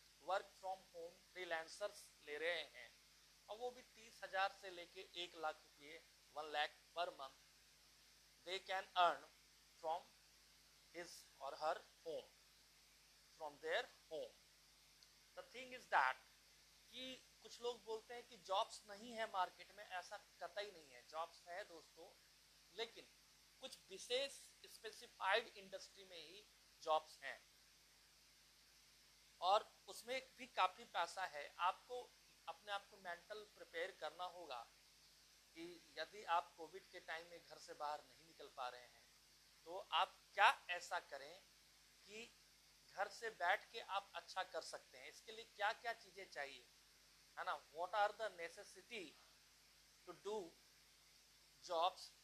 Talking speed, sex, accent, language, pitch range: 140 wpm, male, native, Hindi, 165-225 Hz